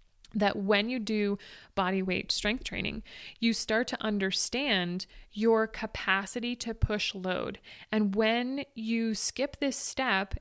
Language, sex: English, female